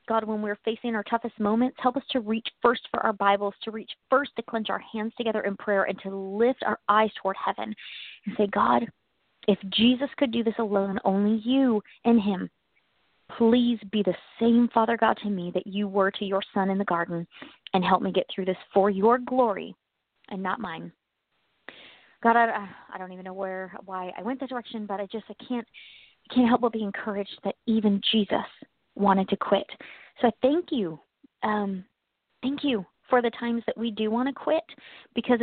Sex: female